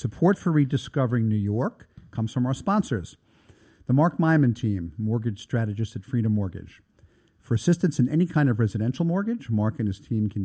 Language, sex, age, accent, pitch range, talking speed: English, male, 50-69, American, 105-140 Hz, 180 wpm